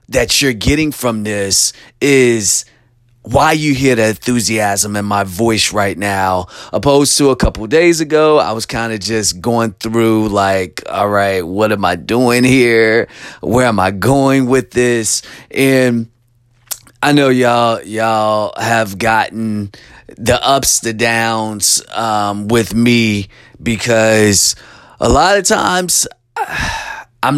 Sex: male